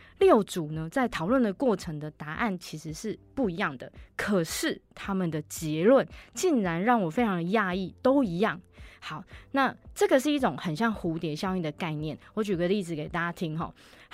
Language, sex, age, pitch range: Chinese, female, 20-39, 165-240 Hz